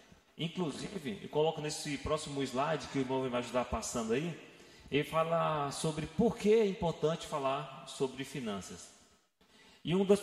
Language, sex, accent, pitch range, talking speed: Portuguese, male, Brazilian, 140-180 Hz, 155 wpm